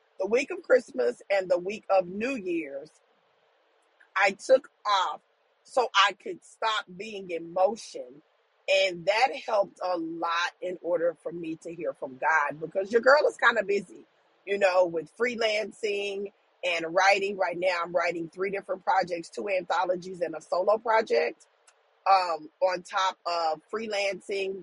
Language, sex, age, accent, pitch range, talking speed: English, female, 40-59, American, 180-220 Hz, 155 wpm